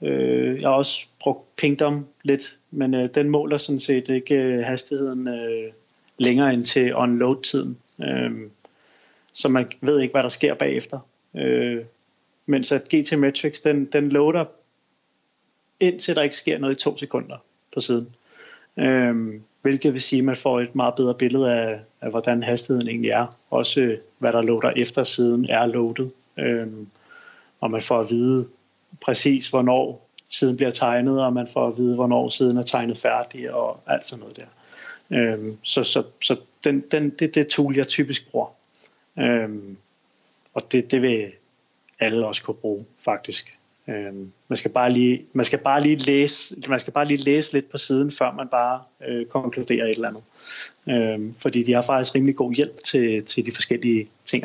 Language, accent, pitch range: Danish, native, 115-140 Hz